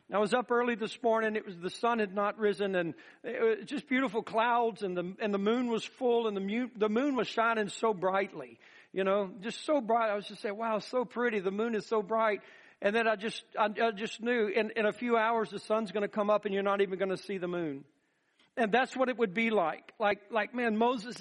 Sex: male